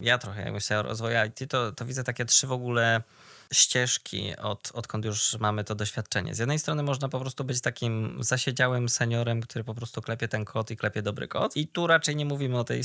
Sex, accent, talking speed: male, native, 225 wpm